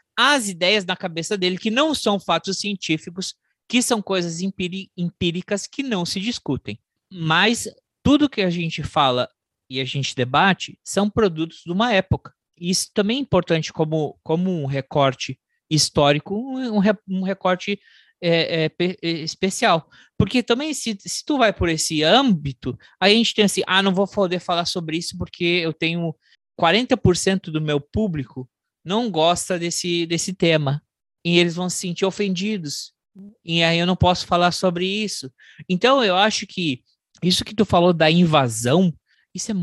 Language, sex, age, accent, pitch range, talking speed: Portuguese, male, 20-39, Brazilian, 140-195 Hz, 165 wpm